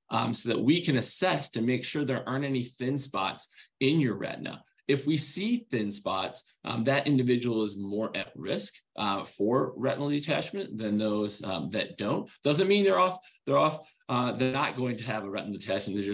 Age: 20-39